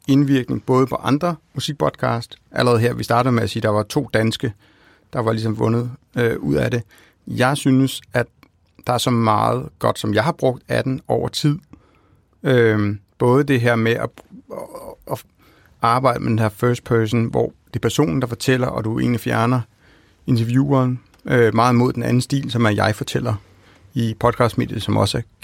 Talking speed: 190 wpm